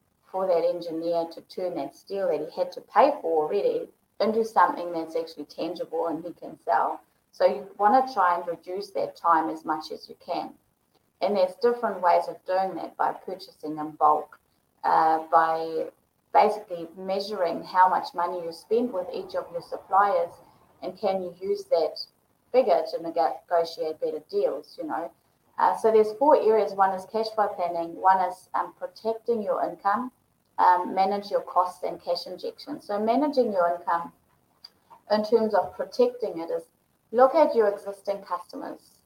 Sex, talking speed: female, 170 wpm